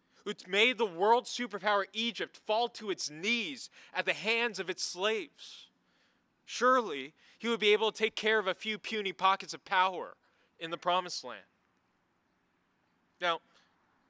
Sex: male